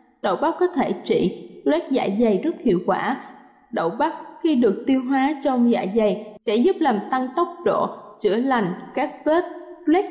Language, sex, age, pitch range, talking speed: Vietnamese, female, 20-39, 220-285 Hz, 185 wpm